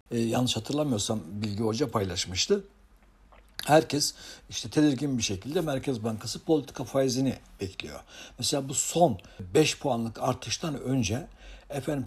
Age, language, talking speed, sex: 60-79, Turkish, 115 wpm, male